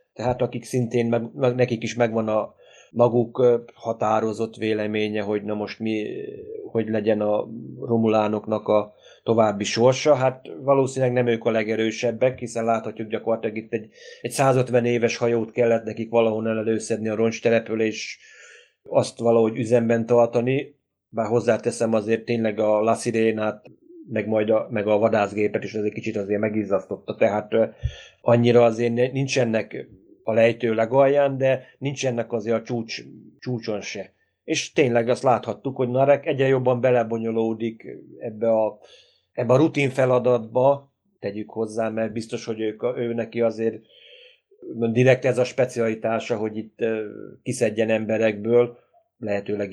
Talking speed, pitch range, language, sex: 140 wpm, 110-125 Hz, Hungarian, male